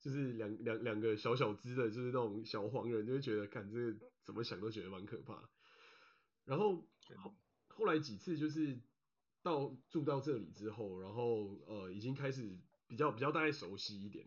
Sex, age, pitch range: male, 20-39, 105-130 Hz